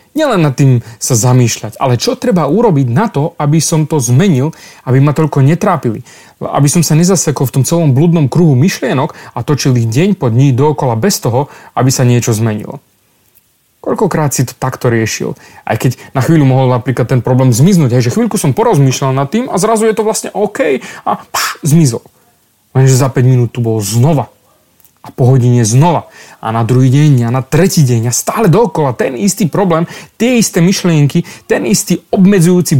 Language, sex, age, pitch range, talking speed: Slovak, male, 30-49, 130-195 Hz, 190 wpm